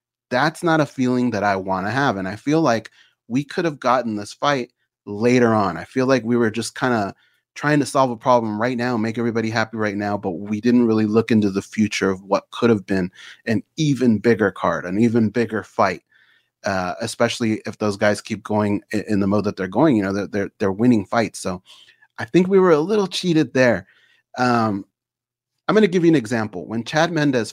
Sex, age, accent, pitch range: male, 30-49, American, 105-125 Hz